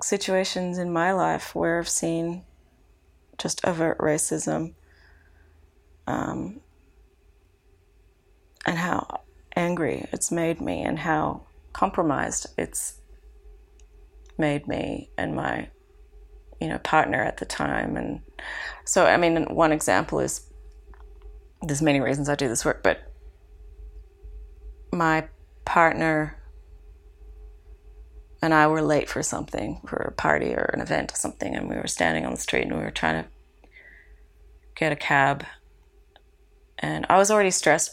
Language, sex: Finnish, female